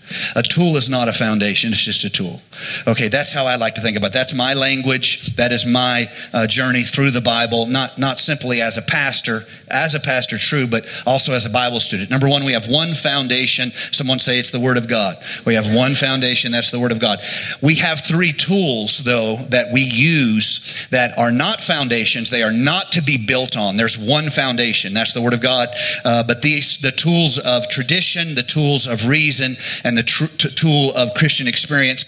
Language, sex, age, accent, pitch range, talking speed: English, male, 40-59, American, 120-150 Hz, 215 wpm